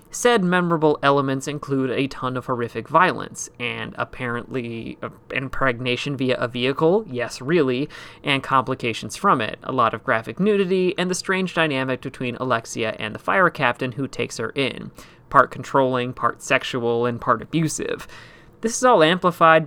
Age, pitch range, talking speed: 30-49, 125-160 Hz, 155 wpm